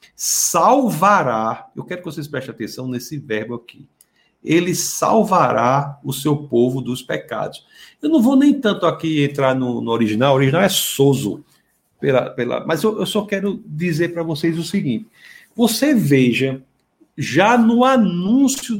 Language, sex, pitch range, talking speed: Portuguese, male, 130-210 Hz, 155 wpm